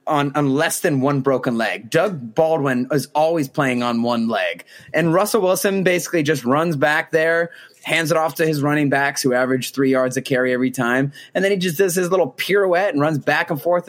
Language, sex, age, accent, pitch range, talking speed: English, male, 20-39, American, 140-190 Hz, 220 wpm